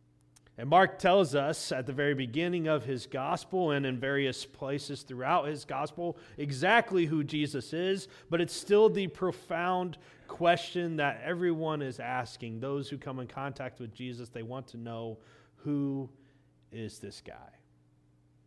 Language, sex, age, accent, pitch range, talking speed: English, male, 30-49, American, 110-155 Hz, 155 wpm